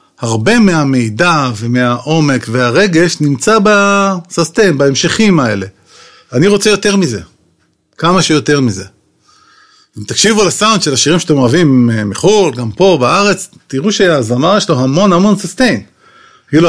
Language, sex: Hebrew, male